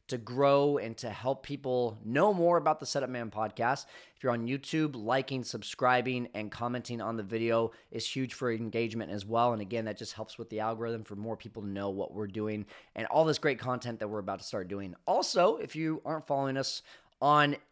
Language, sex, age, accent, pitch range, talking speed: English, male, 30-49, American, 115-160 Hz, 215 wpm